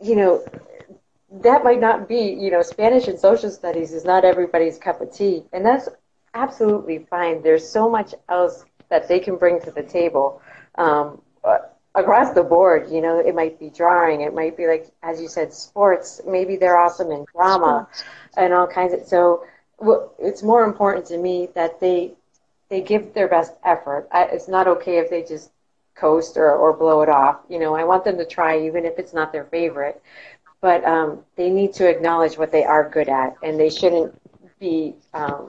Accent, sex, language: American, female, Telugu